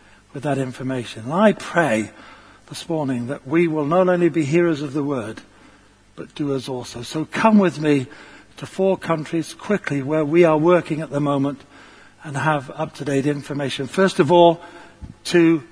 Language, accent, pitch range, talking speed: English, British, 150-180 Hz, 170 wpm